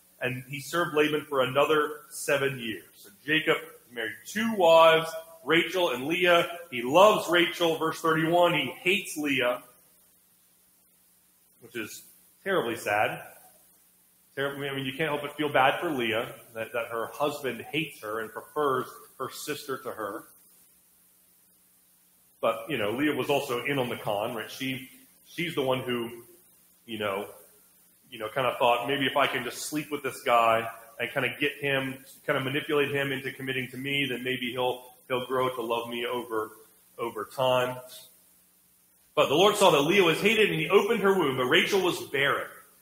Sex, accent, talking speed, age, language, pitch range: male, American, 175 wpm, 30-49, English, 120-160 Hz